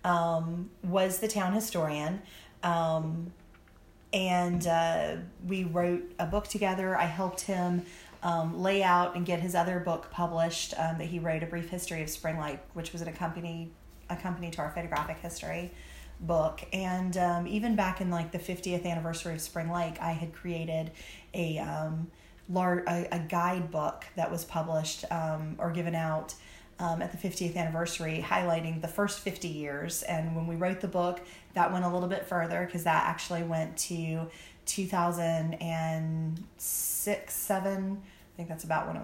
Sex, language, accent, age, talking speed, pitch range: female, English, American, 30-49, 165 wpm, 165-180 Hz